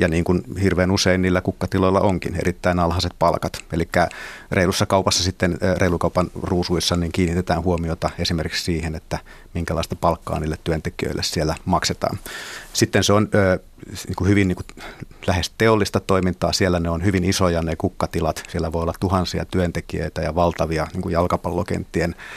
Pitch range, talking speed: 85-95 Hz, 155 wpm